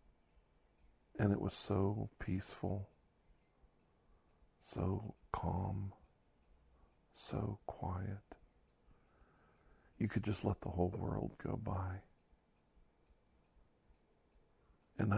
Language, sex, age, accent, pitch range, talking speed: English, male, 50-69, American, 80-100 Hz, 75 wpm